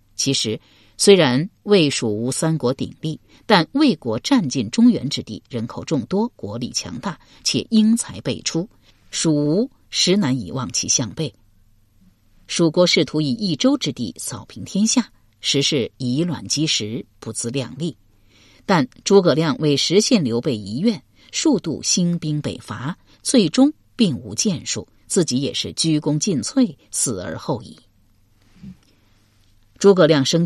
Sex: female